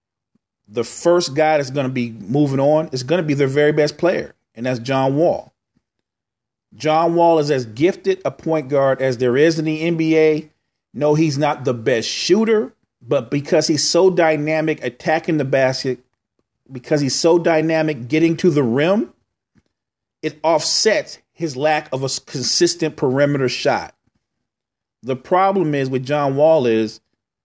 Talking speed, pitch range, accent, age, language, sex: 160 wpm, 125-160 Hz, American, 40-59, English, male